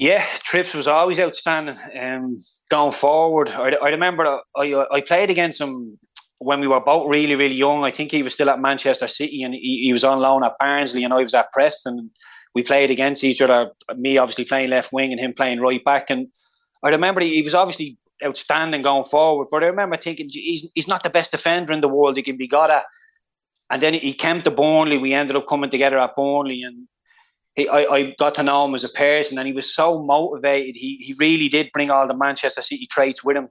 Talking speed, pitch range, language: 225 wpm, 130-150 Hz, English